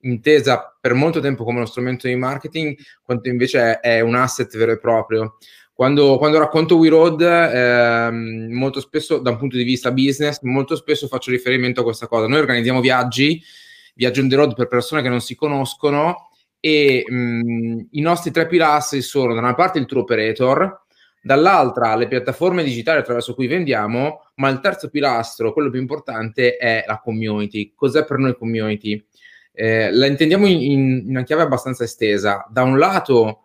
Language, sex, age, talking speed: Italian, male, 20-39, 175 wpm